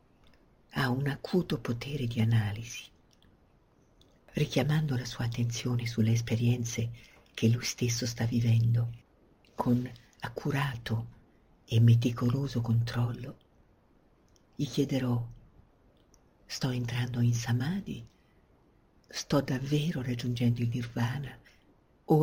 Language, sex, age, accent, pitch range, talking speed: Italian, female, 50-69, native, 115-135 Hz, 90 wpm